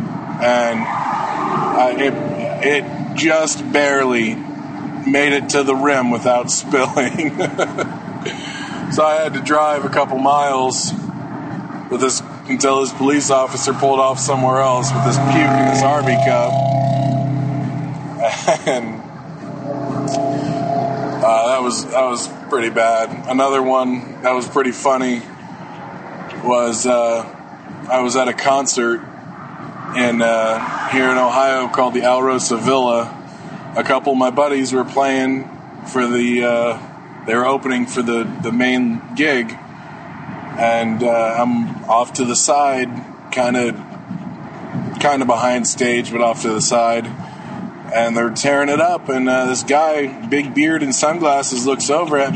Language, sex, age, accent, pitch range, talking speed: English, male, 20-39, American, 120-140 Hz, 140 wpm